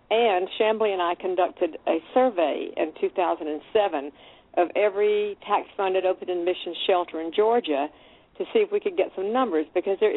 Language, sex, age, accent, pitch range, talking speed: English, female, 60-79, American, 170-225 Hz, 165 wpm